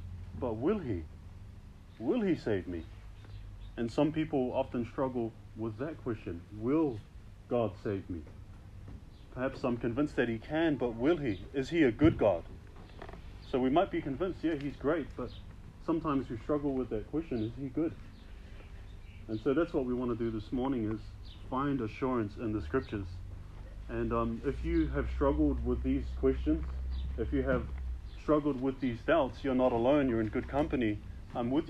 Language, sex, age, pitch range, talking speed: English, male, 30-49, 100-130 Hz, 175 wpm